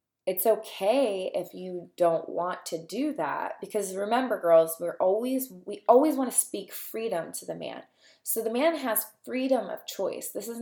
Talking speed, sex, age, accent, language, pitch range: 180 wpm, female, 20-39, American, English, 170-225 Hz